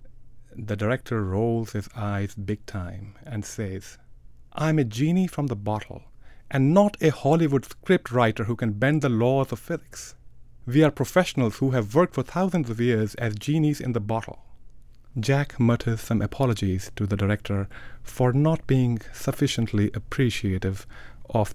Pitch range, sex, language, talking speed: 105-135 Hz, male, English, 155 wpm